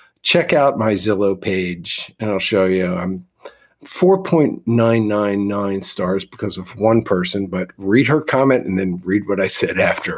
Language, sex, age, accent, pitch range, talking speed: English, male, 50-69, American, 100-140 Hz, 160 wpm